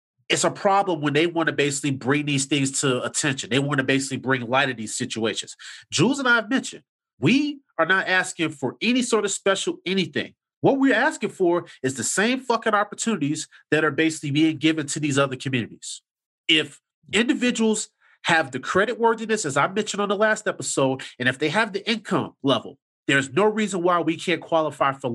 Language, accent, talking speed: English, American, 200 wpm